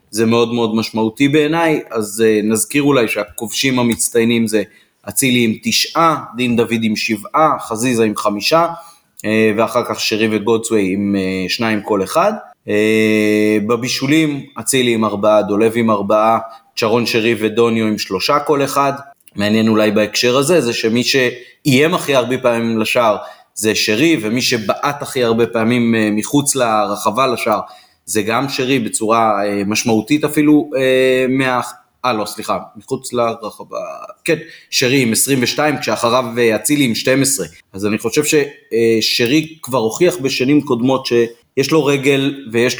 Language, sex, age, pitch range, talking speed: Hebrew, male, 30-49, 110-130 Hz, 135 wpm